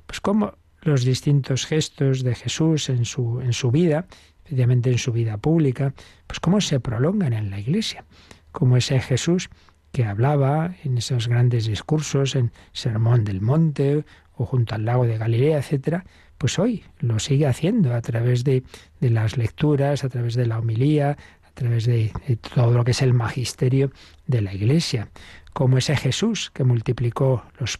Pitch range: 120-145 Hz